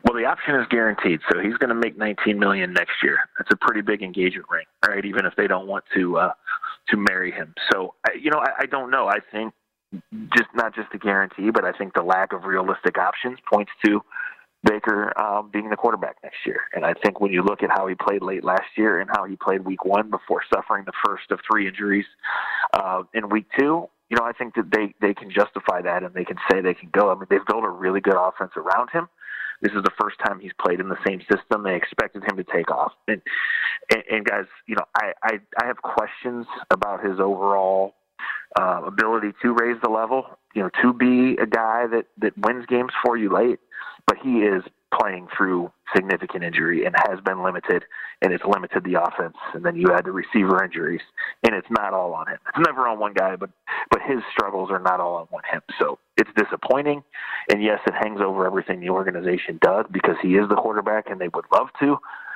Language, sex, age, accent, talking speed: English, male, 30-49, American, 225 wpm